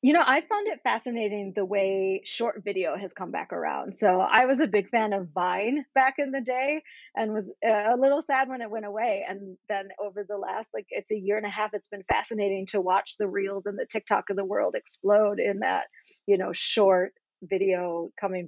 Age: 30-49